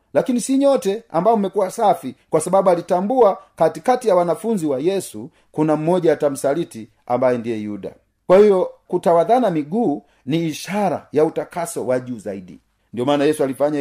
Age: 40-59